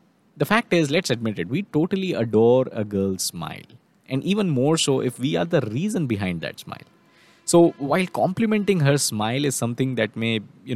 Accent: Indian